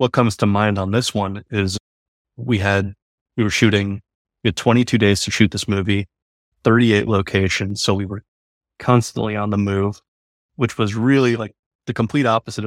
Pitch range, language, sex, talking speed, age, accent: 100-110 Hz, English, male, 175 wpm, 30-49, American